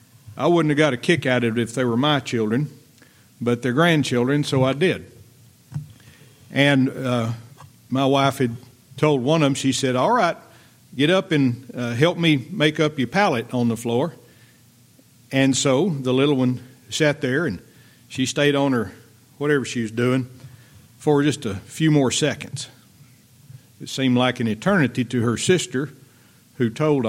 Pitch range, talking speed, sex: 120-145 Hz, 175 wpm, male